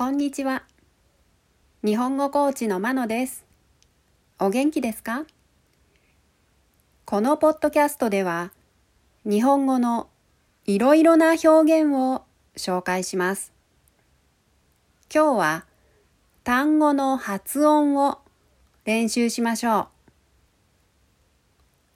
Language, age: Japanese, 40-59